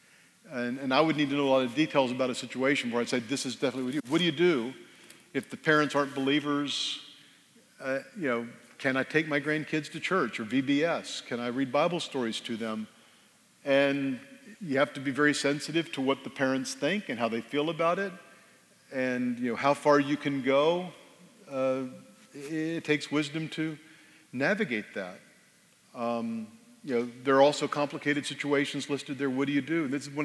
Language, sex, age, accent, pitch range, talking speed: English, male, 50-69, American, 135-160 Hz, 200 wpm